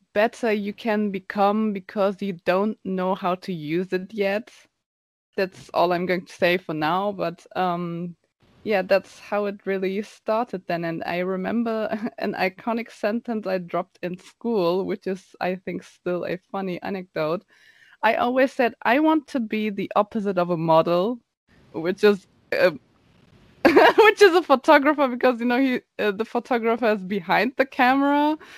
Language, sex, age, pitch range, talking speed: English, female, 20-39, 185-235 Hz, 165 wpm